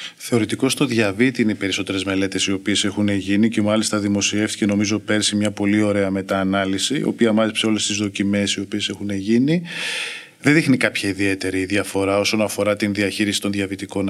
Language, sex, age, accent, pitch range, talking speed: Greek, male, 20-39, native, 105-130 Hz, 175 wpm